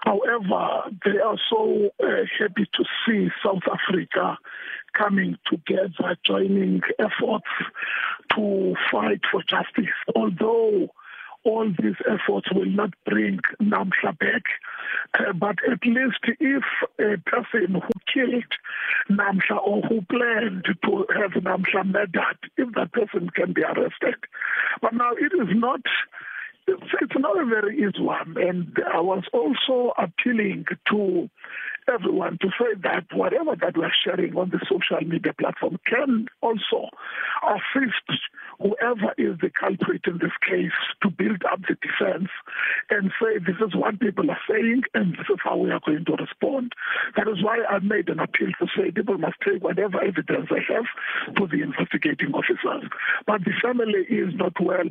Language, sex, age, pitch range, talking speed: English, male, 50-69, 200-275 Hz, 150 wpm